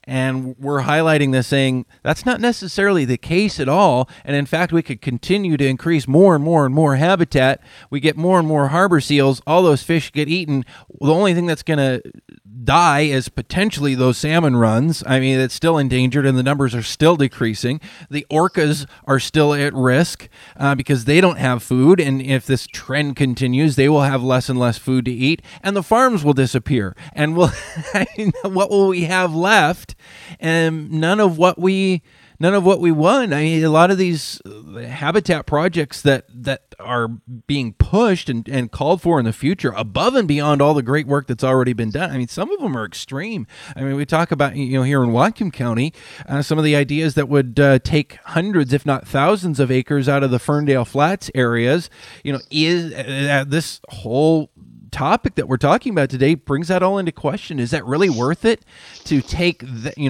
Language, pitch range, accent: English, 130-165 Hz, American